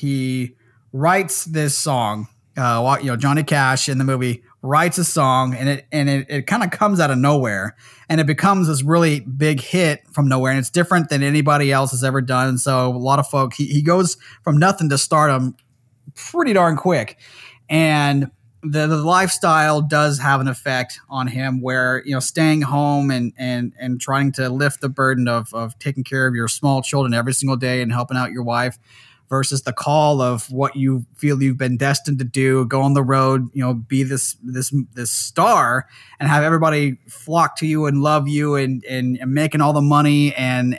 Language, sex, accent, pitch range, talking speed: English, male, American, 125-145 Hz, 205 wpm